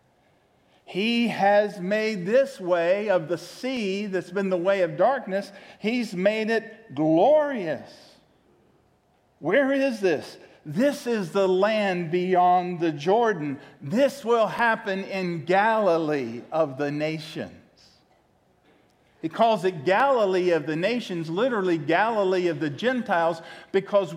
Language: English